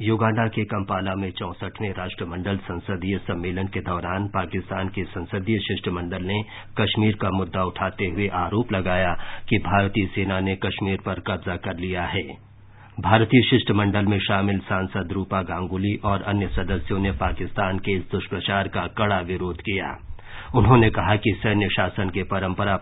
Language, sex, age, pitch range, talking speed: Hindi, male, 50-69, 95-110 Hz, 155 wpm